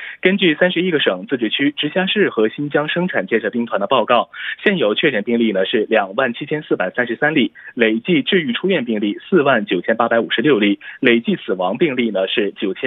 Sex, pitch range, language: male, 110-180 Hz, Korean